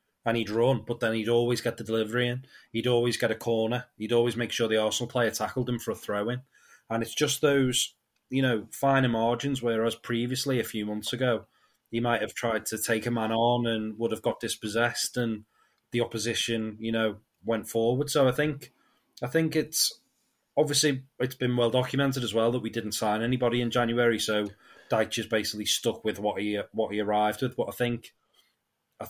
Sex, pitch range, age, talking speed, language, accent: male, 110-120 Hz, 30-49, 205 wpm, English, British